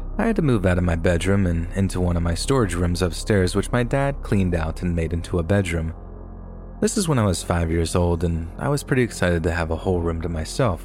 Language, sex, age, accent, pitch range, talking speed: English, male, 30-49, American, 80-100 Hz, 255 wpm